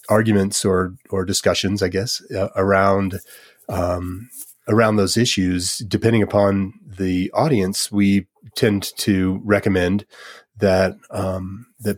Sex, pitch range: male, 95-105 Hz